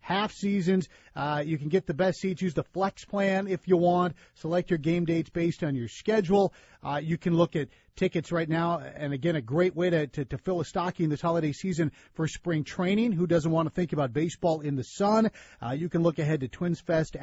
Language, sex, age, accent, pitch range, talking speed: English, male, 40-59, American, 140-180 Hz, 235 wpm